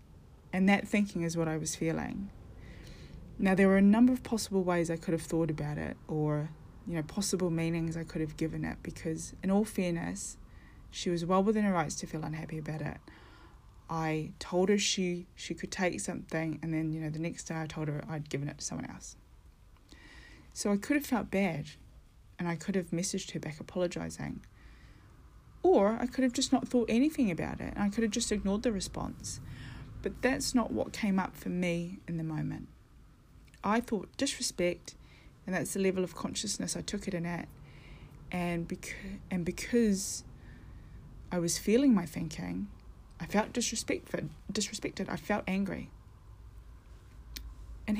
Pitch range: 155-205 Hz